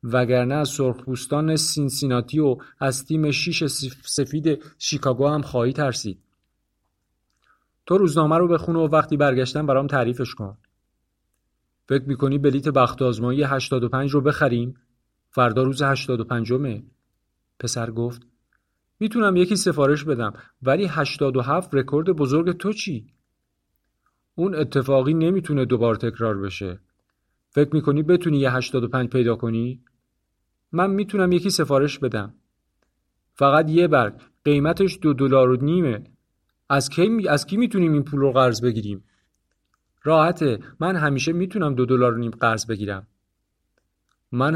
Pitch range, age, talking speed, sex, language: 120-155 Hz, 40-59, 125 wpm, male, Persian